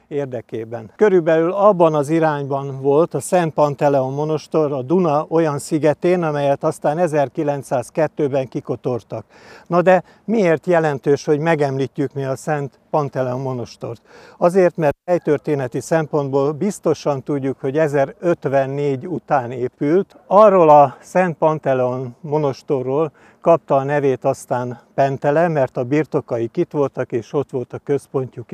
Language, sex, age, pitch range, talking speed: Hungarian, male, 60-79, 135-160 Hz, 125 wpm